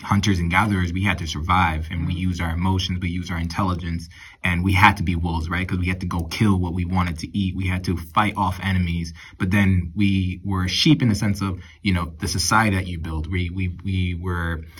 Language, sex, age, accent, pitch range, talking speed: English, male, 20-39, American, 85-100 Hz, 245 wpm